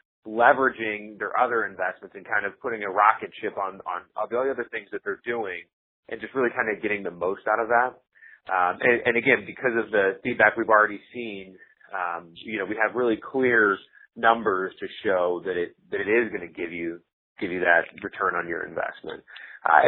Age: 30-49